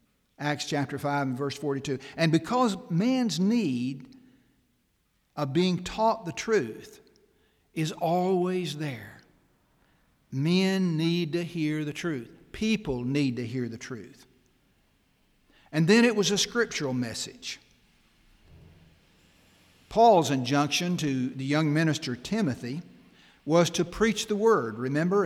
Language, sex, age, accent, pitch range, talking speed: English, male, 60-79, American, 135-190 Hz, 120 wpm